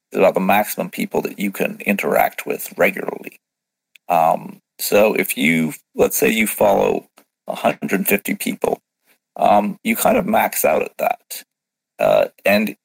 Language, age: English, 40-59